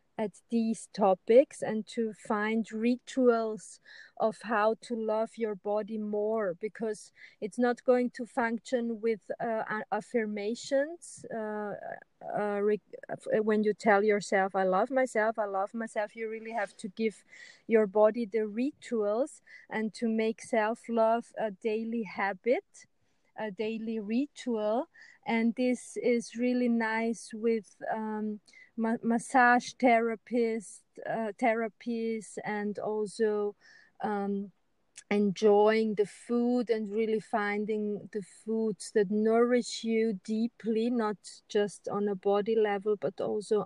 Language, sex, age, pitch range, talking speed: English, female, 30-49, 210-235 Hz, 120 wpm